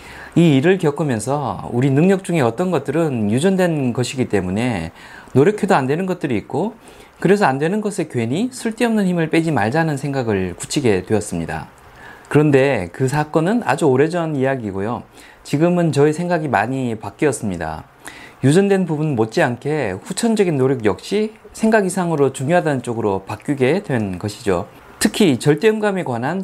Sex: male